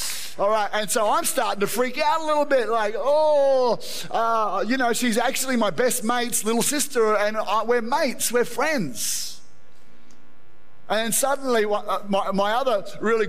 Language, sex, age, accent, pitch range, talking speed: English, male, 30-49, Australian, 170-220 Hz, 165 wpm